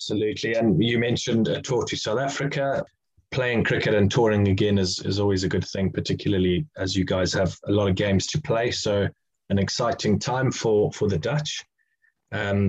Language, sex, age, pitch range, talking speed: English, male, 20-39, 95-125 Hz, 190 wpm